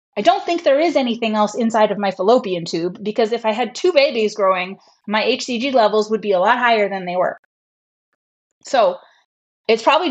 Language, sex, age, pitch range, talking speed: English, female, 20-39, 200-270 Hz, 195 wpm